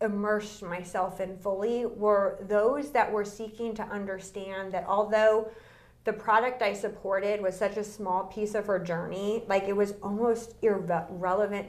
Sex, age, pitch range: female, 30-49, 185-210 Hz